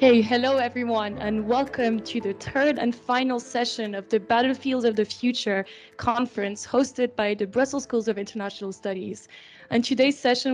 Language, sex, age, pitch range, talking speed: English, female, 20-39, 225-260 Hz, 165 wpm